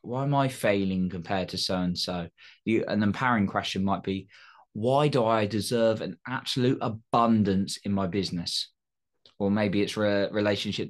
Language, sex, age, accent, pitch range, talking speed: English, male, 20-39, British, 95-110 Hz, 145 wpm